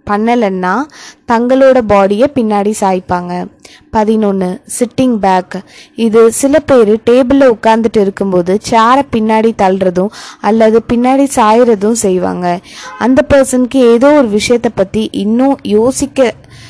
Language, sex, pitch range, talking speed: Tamil, female, 200-255 Hz, 105 wpm